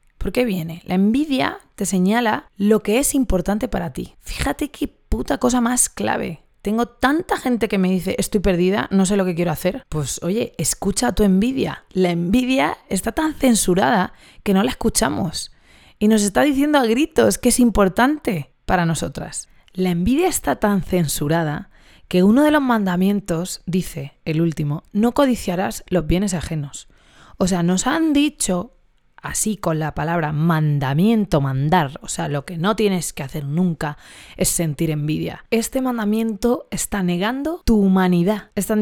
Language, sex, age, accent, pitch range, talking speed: Spanish, female, 20-39, Spanish, 175-235 Hz, 165 wpm